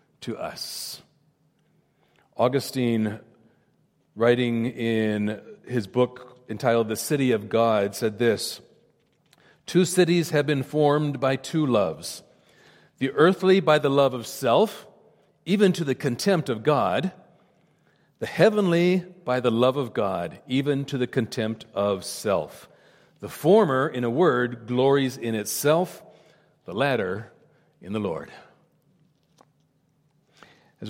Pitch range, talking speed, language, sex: 125-165 Hz, 120 wpm, English, male